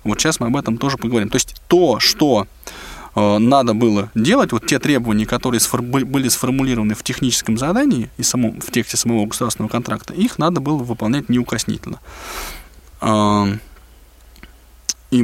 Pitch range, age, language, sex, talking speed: 115-150 Hz, 20-39, Russian, male, 155 wpm